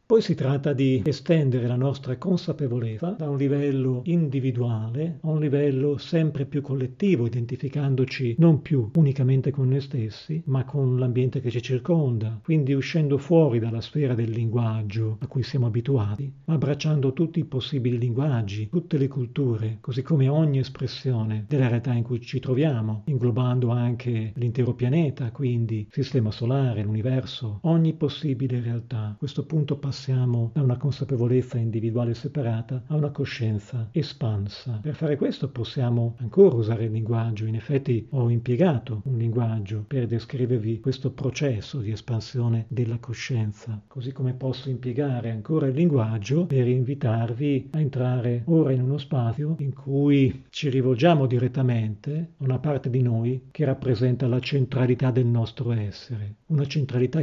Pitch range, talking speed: 120-140 Hz, 145 wpm